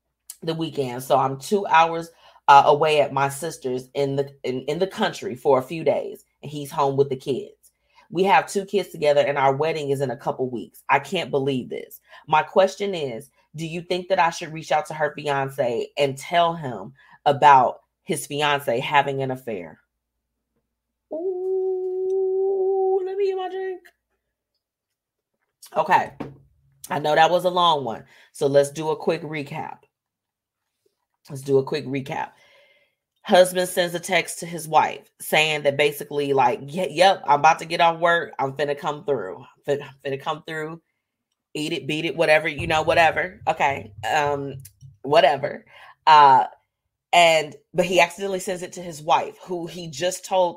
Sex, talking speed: female, 170 wpm